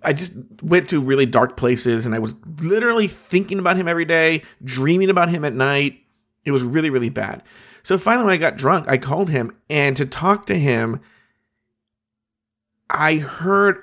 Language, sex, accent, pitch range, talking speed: English, male, American, 120-170 Hz, 180 wpm